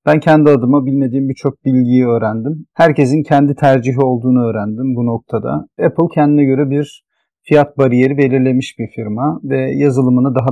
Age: 40-59